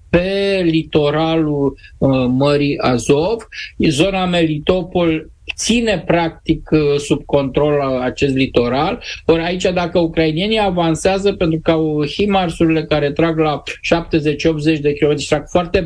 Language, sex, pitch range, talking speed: Romanian, male, 150-185 Hz, 115 wpm